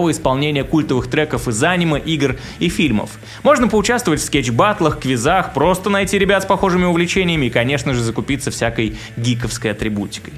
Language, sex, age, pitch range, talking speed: Russian, male, 20-39, 125-180 Hz, 155 wpm